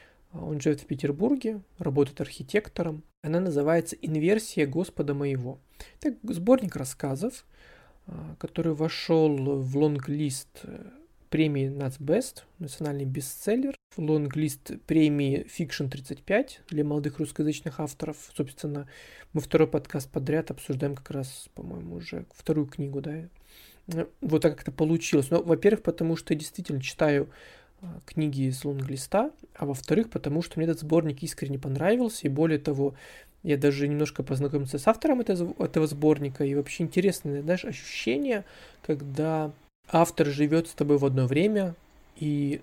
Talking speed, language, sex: 130 wpm, Russian, male